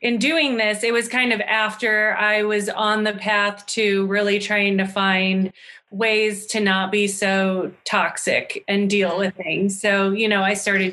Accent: American